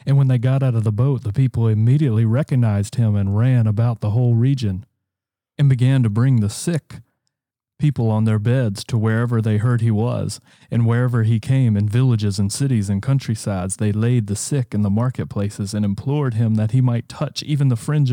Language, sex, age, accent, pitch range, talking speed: English, male, 30-49, American, 110-130 Hz, 205 wpm